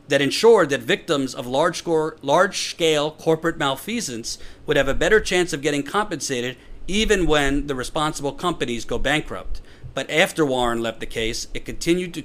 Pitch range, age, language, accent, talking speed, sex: 130-195 Hz, 40-59, English, American, 160 wpm, male